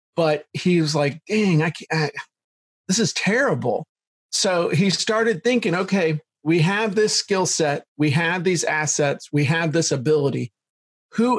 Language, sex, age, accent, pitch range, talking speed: English, male, 40-59, American, 155-205 Hz, 160 wpm